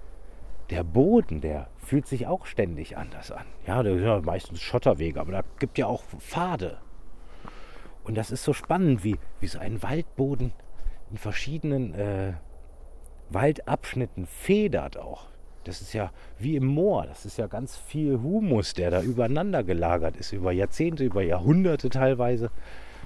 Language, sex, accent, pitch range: German, male, German, 80-130 Hz